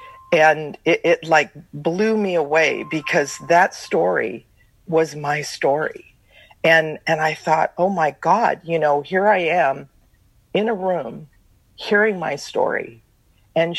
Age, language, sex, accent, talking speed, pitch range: 50-69, English, female, American, 140 wpm, 145-175 Hz